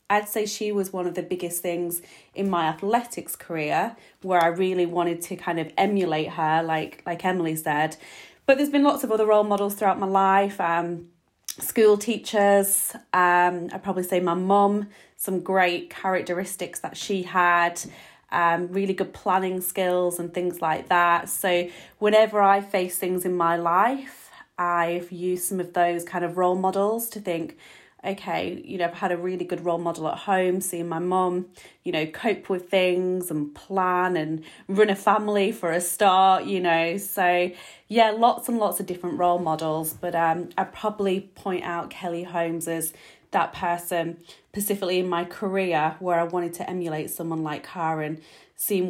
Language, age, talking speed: English, 30-49, 180 wpm